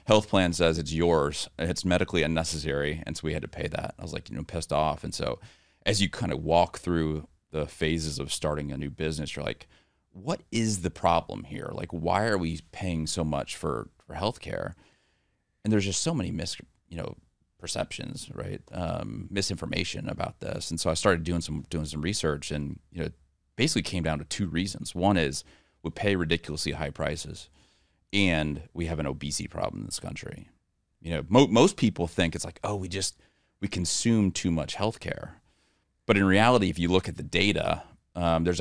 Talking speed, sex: 205 wpm, male